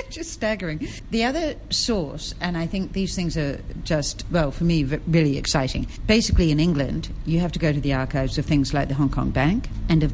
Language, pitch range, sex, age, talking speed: English, 135-165 Hz, female, 60-79, 215 wpm